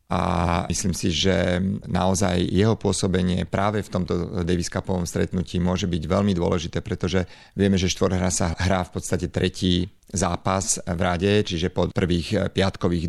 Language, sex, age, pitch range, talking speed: Slovak, male, 40-59, 90-95 Hz, 150 wpm